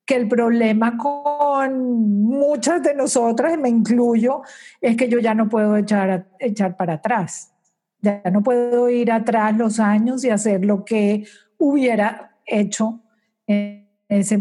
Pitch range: 210-245 Hz